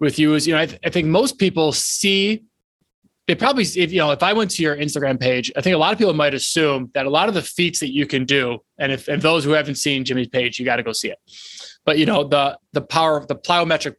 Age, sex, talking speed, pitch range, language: 20-39, male, 290 wpm, 135-165 Hz, English